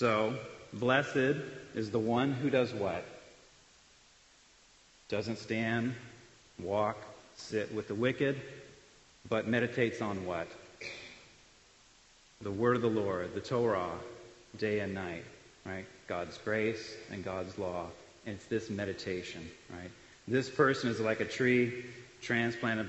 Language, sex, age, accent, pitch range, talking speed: English, male, 40-59, American, 100-125 Hz, 120 wpm